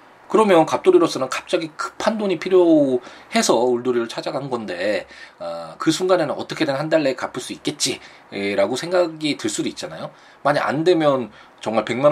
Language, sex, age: Korean, male, 20-39